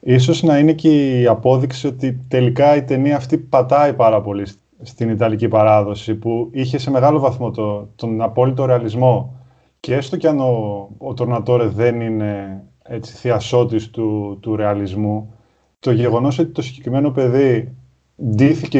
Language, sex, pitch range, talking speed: Greek, male, 110-140 Hz, 145 wpm